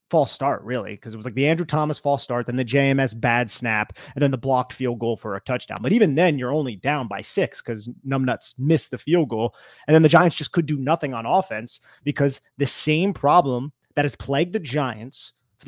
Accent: American